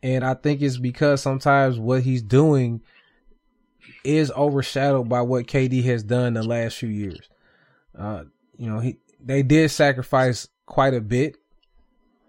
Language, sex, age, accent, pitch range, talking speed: English, male, 20-39, American, 125-145 Hz, 145 wpm